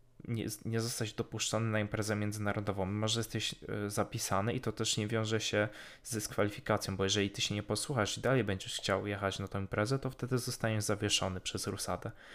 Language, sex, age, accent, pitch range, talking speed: Polish, male, 20-39, native, 100-115 Hz, 185 wpm